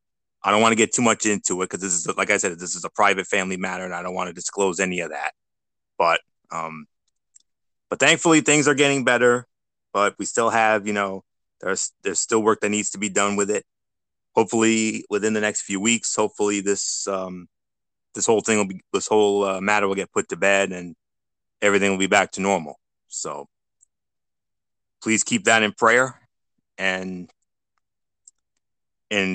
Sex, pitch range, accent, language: male, 95-105 Hz, American, English